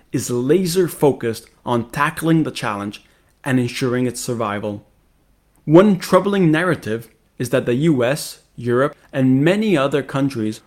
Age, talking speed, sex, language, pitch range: 20-39, 125 wpm, male, English, 115-150 Hz